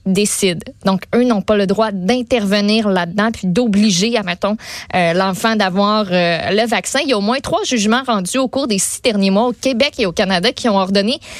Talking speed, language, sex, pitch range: 210 wpm, French, female, 200-255 Hz